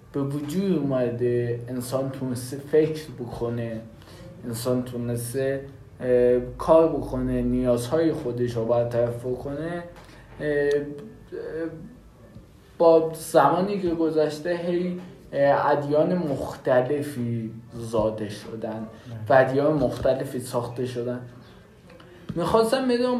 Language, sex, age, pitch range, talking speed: Persian, male, 20-39, 125-150 Hz, 90 wpm